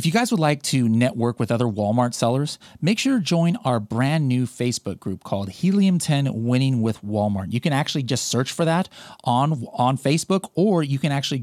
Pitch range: 130-210 Hz